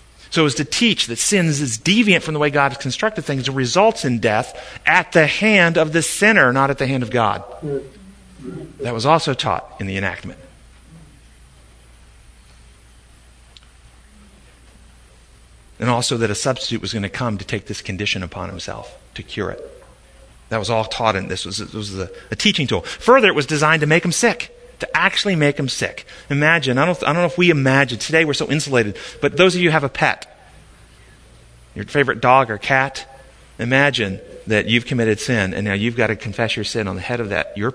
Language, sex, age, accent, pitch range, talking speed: English, male, 40-59, American, 110-160 Hz, 200 wpm